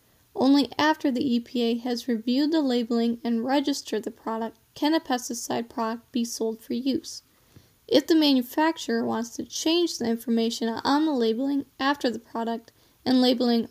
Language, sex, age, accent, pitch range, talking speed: English, female, 10-29, American, 235-280 Hz, 160 wpm